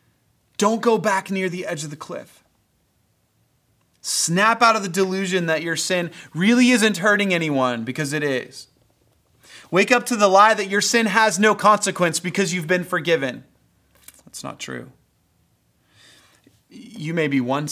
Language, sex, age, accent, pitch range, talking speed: English, male, 30-49, American, 115-155 Hz, 155 wpm